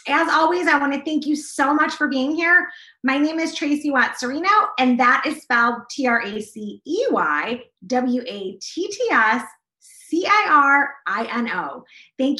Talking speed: 190 wpm